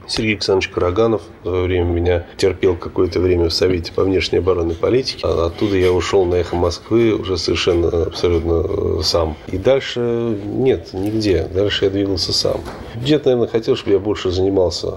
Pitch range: 90-110 Hz